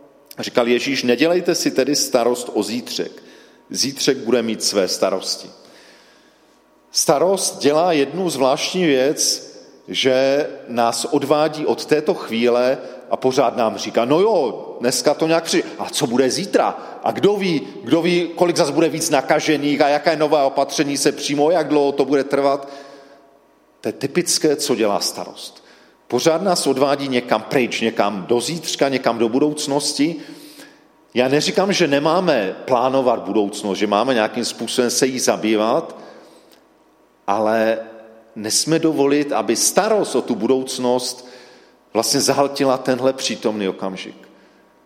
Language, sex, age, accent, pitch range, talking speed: Czech, male, 40-59, native, 125-165 Hz, 135 wpm